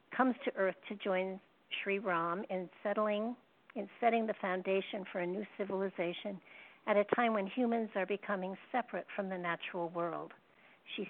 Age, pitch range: 60-79, 180-210 Hz